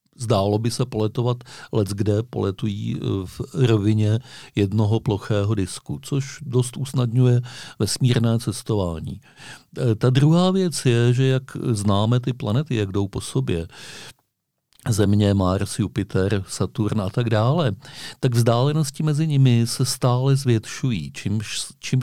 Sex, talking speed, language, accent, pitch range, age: male, 125 wpm, Czech, native, 105-125 Hz, 50-69